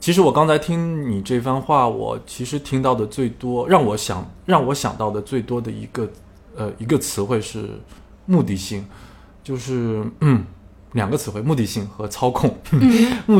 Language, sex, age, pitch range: Chinese, male, 20-39, 100-130 Hz